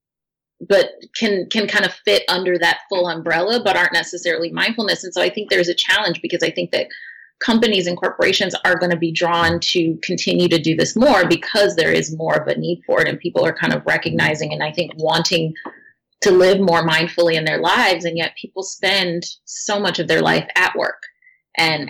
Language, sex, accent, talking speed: English, female, American, 210 wpm